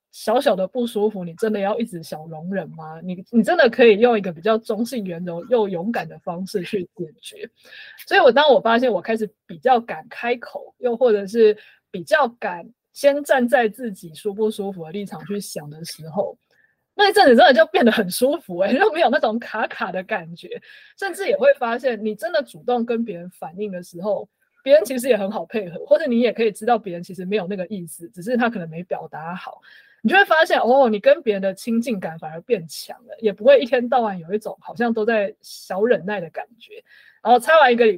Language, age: Chinese, 20-39